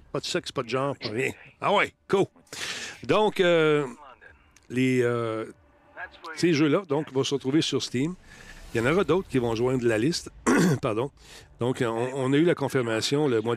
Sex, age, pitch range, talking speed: male, 40-59, 110-130 Hz, 190 wpm